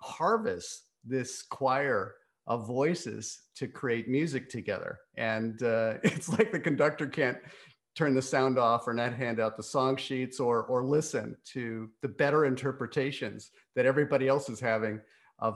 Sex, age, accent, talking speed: male, 50-69, American, 155 wpm